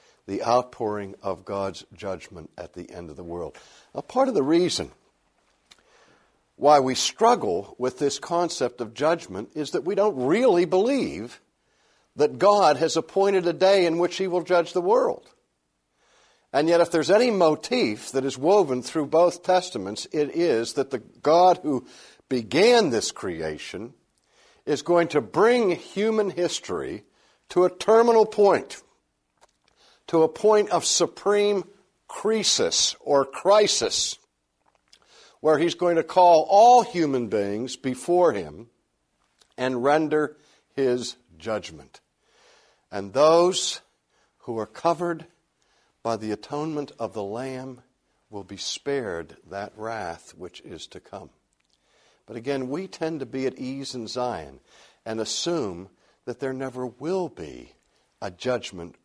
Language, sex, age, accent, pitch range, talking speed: English, male, 60-79, American, 115-175 Hz, 135 wpm